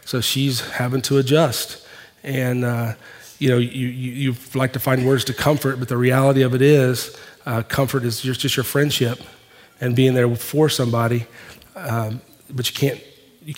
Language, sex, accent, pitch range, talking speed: English, male, American, 125-145 Hz, 175 wpm